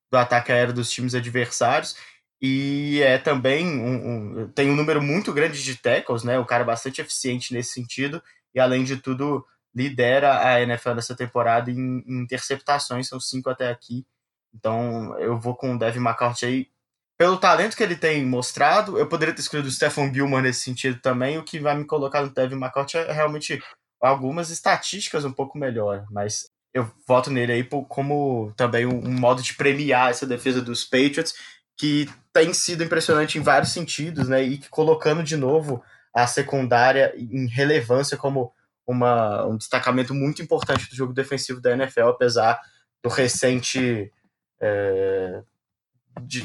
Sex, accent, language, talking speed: male, Brazilian, Portuguese, 160 wpm